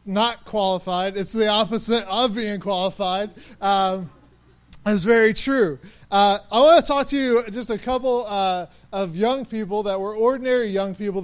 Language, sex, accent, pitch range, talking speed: English, male, American, 185-225 Hz, 165 wpm